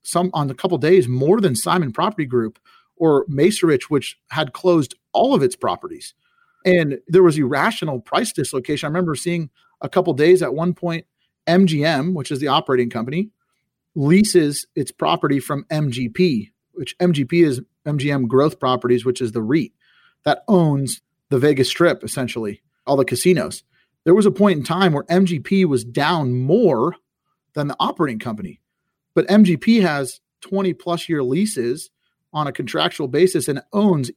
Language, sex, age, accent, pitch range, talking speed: English, male, 40-59, American, 135-180 Hz, 165 wpm